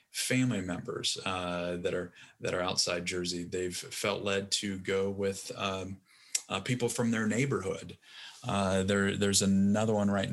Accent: American